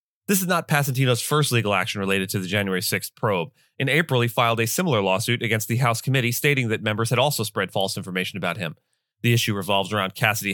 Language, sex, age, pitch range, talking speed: English, male, 30-49, 105-125 Hz, 220 wpm